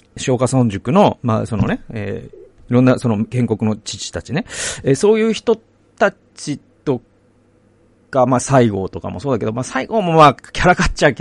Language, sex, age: Japanese, male, 40-59